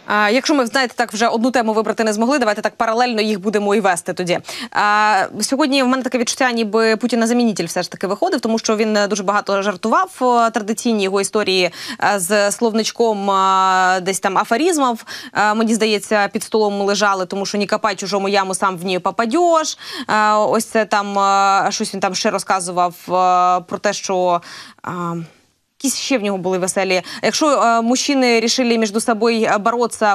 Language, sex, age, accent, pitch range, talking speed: Ukrainian, female, 20-39, native, 195-230 Hz, 175 wpm